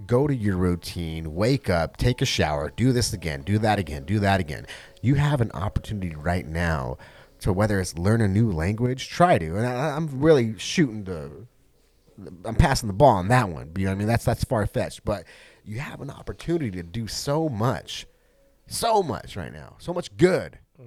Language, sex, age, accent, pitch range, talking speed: English, male, 30-49, American, 90-130 Hz, 195 wpm